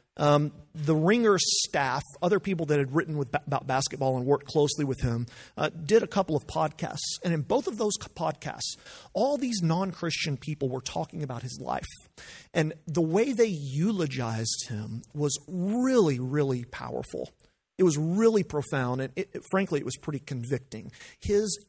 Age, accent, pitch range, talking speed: 40-59, American, 135-180 Hz, 160 wpm